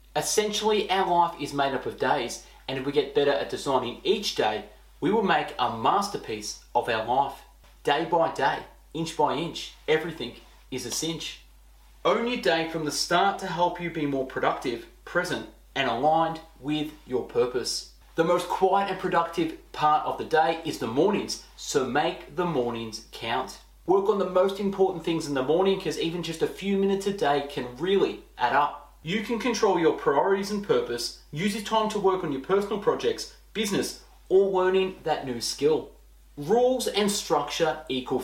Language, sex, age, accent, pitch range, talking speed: English, male, 30-49, Australian, 145-200 Hz, 185 wpm